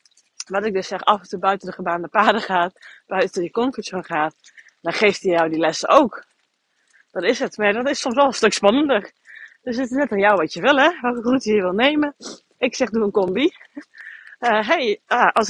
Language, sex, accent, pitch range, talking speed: Dutch, female, Dutch, 185-250 Hz, 230 wpm